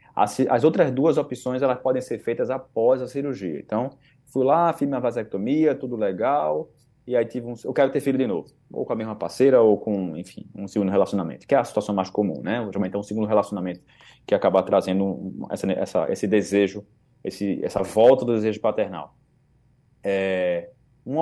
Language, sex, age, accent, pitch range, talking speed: Portuguese, male, 20-39, Brazilian, 110-145 Hz, 185 wpm